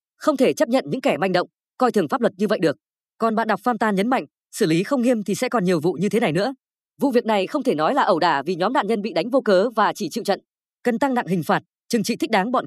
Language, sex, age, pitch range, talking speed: Vietnamese, female, 20-39, 185-250 Hz, 315 wpm